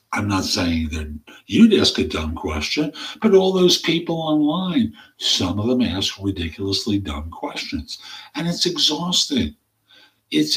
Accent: American